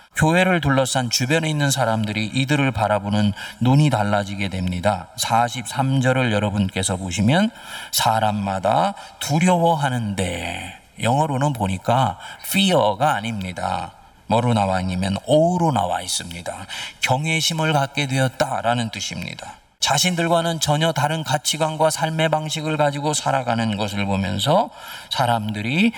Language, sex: Korean, male